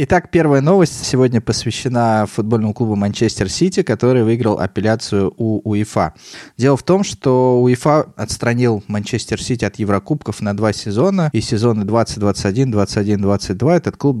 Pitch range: 100-120 Hz